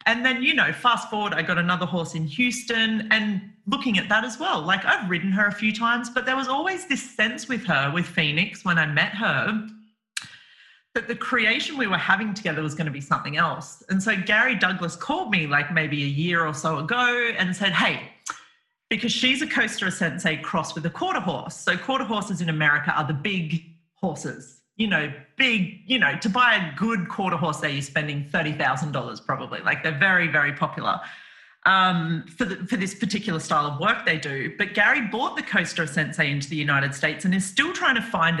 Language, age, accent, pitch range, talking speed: English, 40-59, Australian, 155-220 Hz, 210 wpm